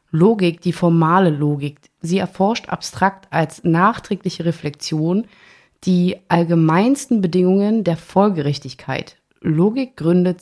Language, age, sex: German, 30-49, female